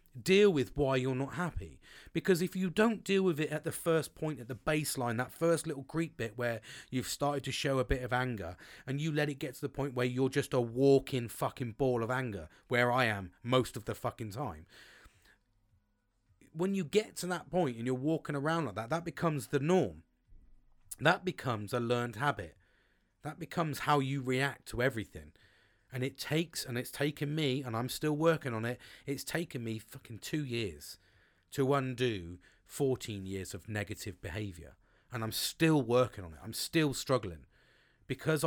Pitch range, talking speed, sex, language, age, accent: 110-160 Hz, 190 wpm, male, English, 30-49, British